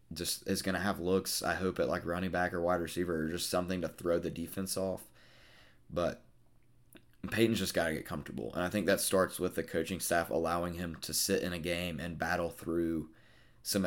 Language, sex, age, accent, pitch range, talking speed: English, male, 20-39, American, 85-100 Hz, 210 wpm